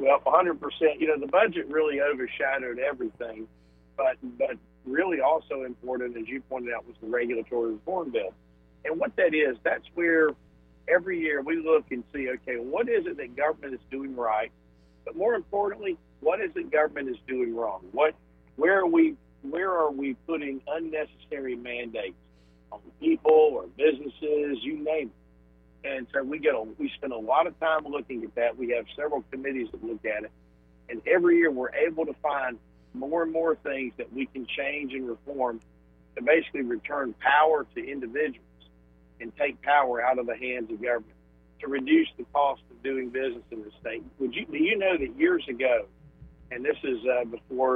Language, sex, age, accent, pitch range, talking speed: English, male, 50-69, American, 115-160 Hz, 185 wpm